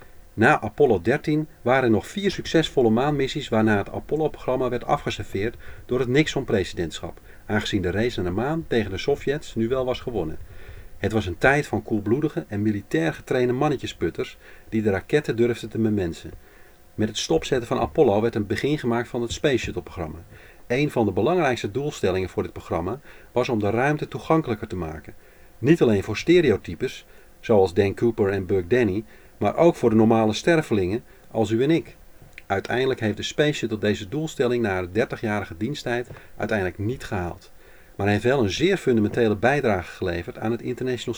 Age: 40-59